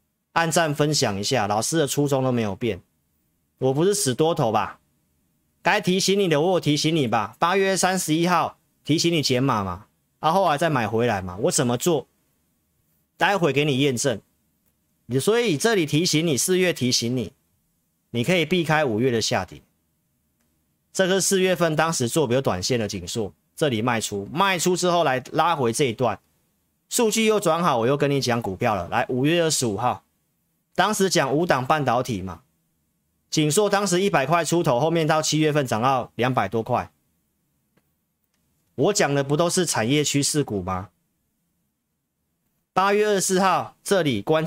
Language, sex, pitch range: Chinese, male, 115-170 Hz